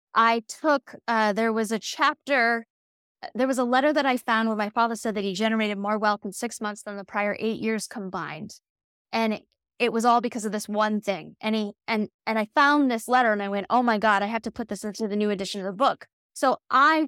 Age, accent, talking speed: 10-29, American, 240 wpm